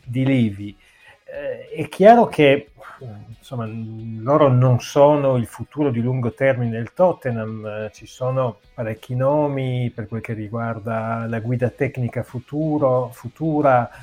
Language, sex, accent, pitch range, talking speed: Italian, male, native, 115-140 Hz, 130 wpm